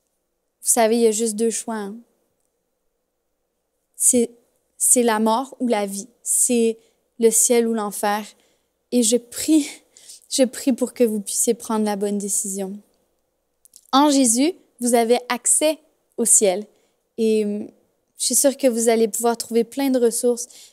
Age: 20-39